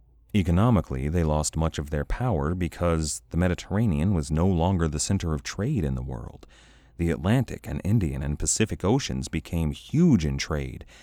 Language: English